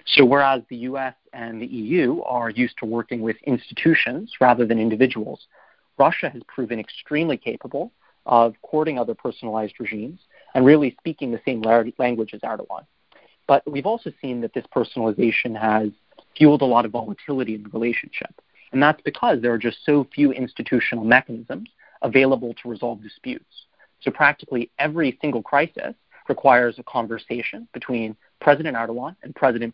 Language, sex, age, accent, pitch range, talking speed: English, male, 30-49, American, 115-135 Hz, 155 wpm